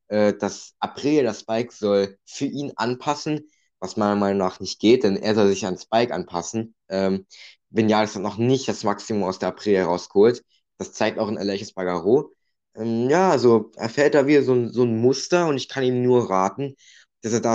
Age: 20-39